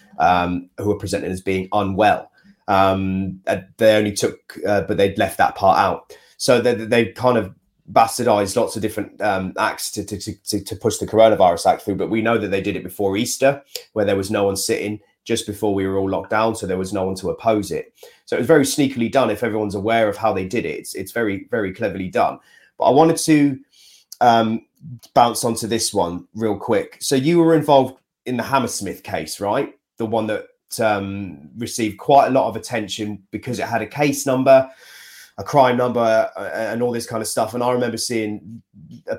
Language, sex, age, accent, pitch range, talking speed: English, male, 30-49, British, 100-125 Hz, 210 wpm